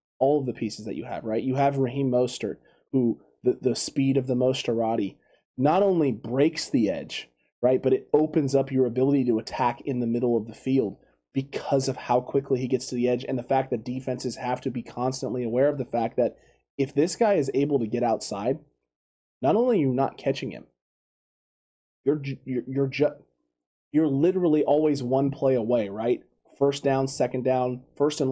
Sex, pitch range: male, 120-140 Hz